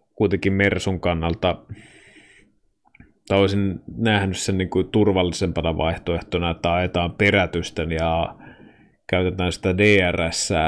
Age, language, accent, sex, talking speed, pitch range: 30-49, Finnish, native, male, 95 wpm, 85-100 Hz